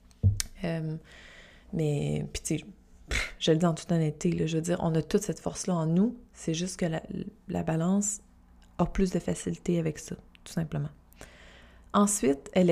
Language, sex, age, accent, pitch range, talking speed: French, female, 20-39, Canadian, 165-205 Hz, 180 wpm